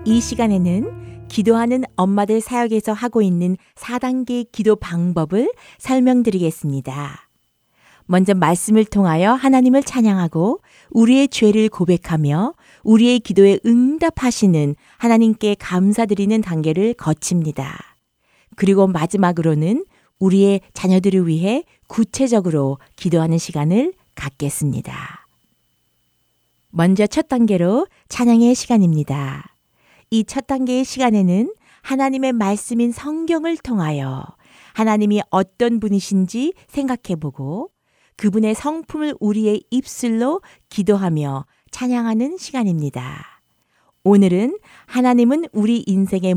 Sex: female